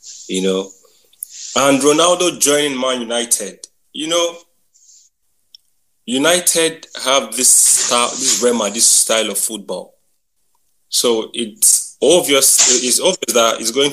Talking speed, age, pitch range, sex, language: 115 wpm, 20-39, 110-155 Hz, male, English